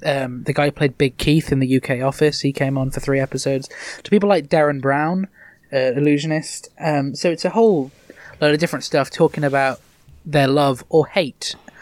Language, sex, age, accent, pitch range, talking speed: English, male, 20-39, British, 135-155 Hz, 200 wpm